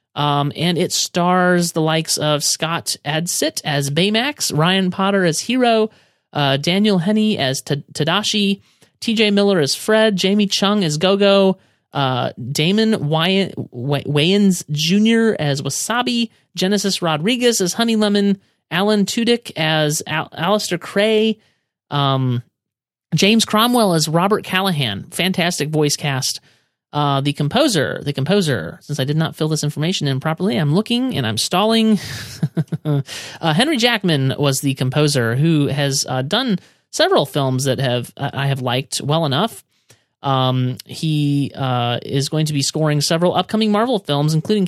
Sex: male